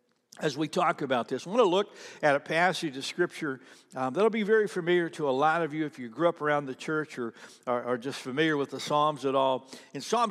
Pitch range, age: 130-170 Hz, 60-79